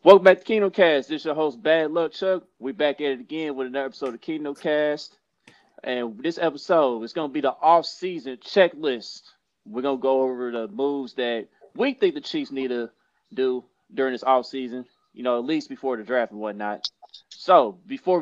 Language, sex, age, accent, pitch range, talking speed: English, male, 20-39, American, 125-155 Hz, 200 wpm